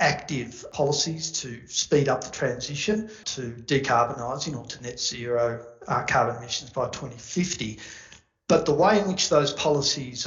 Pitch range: 120-150 Hz